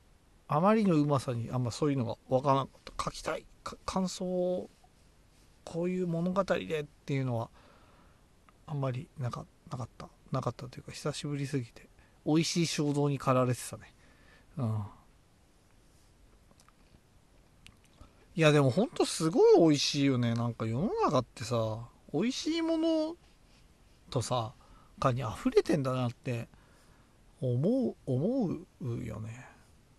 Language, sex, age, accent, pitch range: Japanese, male, 40-59, native, 120-190 Hz